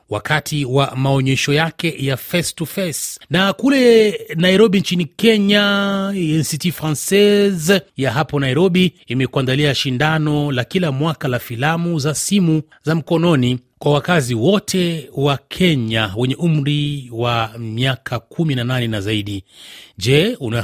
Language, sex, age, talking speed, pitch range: Swahili, male, 30-49, 130 wpm, 120-170 Hz